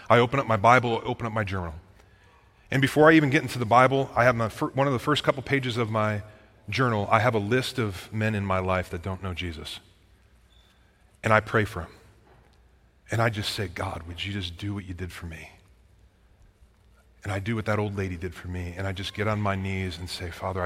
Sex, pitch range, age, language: male, 95-110 Hz, 30-49, English